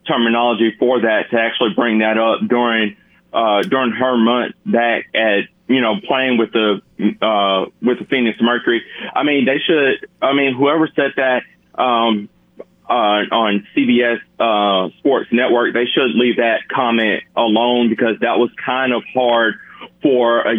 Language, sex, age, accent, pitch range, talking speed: English, male, 30-49, American, 110-120 Hz, 160 wpm